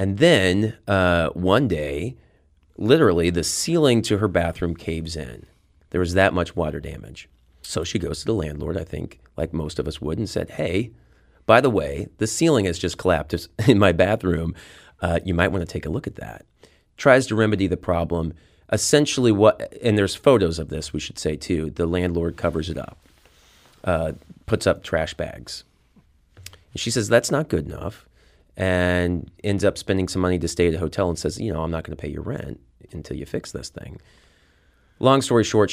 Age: 30-49